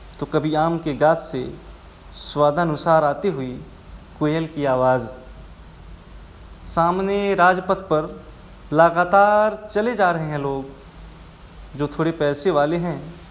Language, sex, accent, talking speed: Hindi, male, native, 115 wpm